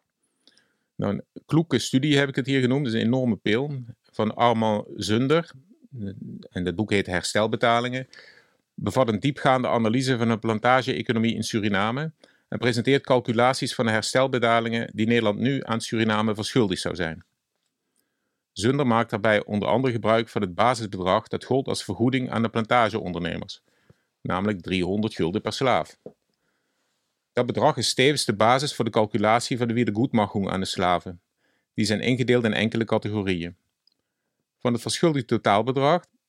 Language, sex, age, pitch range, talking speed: Dutch, male, 50-69, 105-125 Hz, 155 wpm